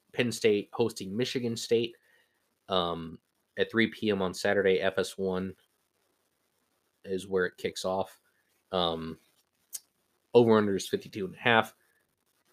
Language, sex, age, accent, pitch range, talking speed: English, male, 20-39, American, 95-120 Hz, 100 wpm